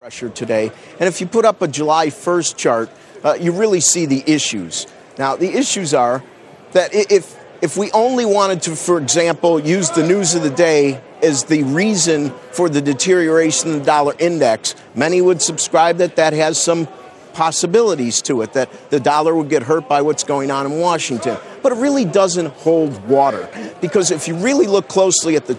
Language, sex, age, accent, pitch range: Korean, male, 50-69, American, 145-180 Hz